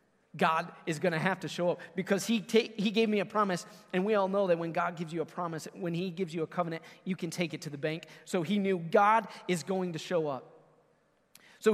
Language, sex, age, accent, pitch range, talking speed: English, male, 30-49, American, 145-195 Hz, 255 wpm